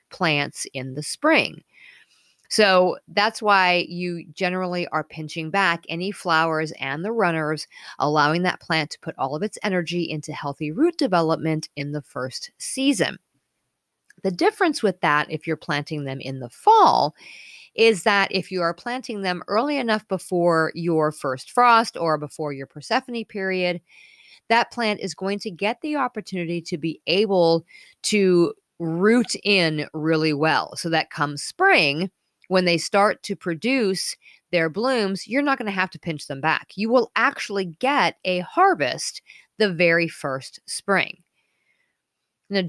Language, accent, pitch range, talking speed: English, American, 155-205 Hz, 155 wpm